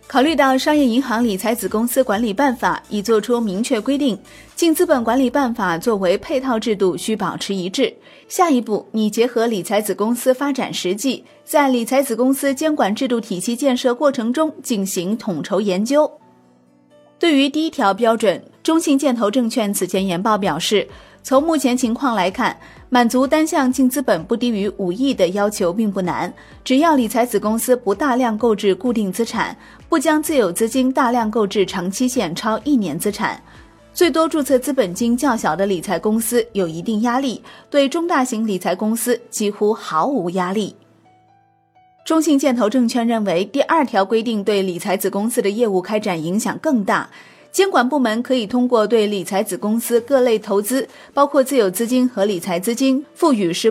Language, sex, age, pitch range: Chinese, female, 30-49, 205-265 Hz